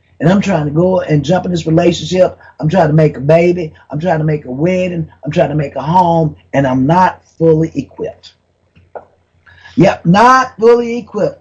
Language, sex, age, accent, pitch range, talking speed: English, male, 30-49, American, 155-225 Hz, 195 wpm